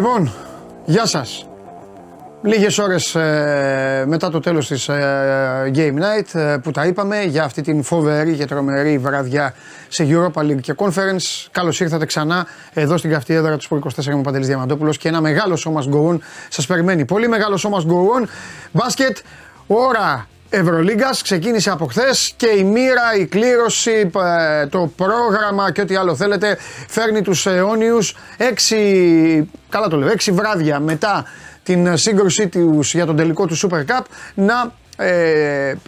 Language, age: Greek, 30-49